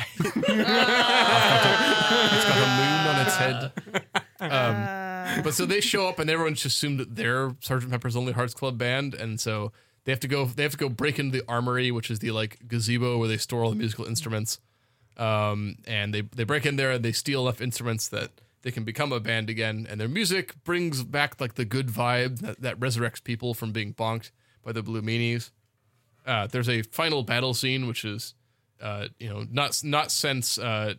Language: English